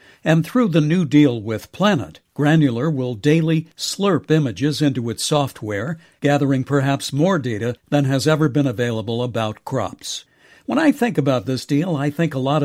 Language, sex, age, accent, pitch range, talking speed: English, male, 60-79, American, 130-160 Hz, 170 wpm